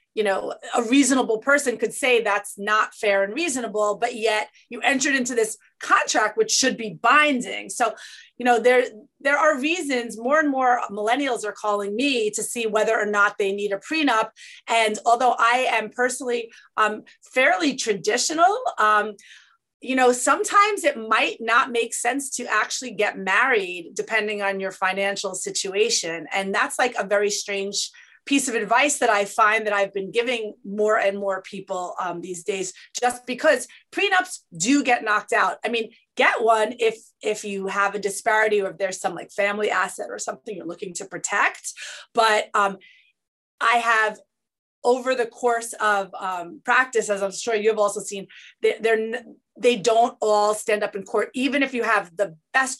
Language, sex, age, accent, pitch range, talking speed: English, female, 30-49, American, 205-250 Hz, 175 wpm